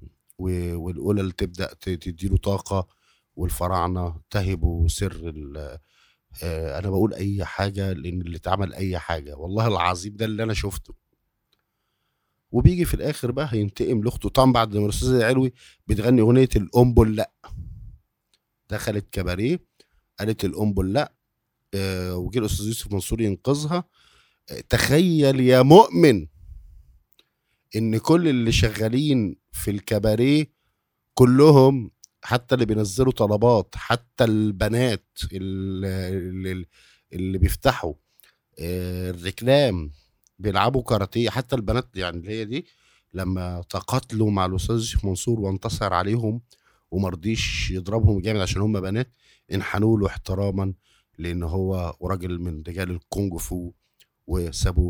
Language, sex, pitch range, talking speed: Arabic, male, 90-115 Hz, 110 wpm